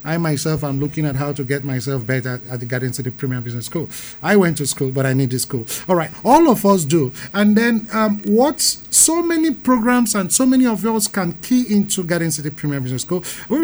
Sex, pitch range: male, 130-205 Hz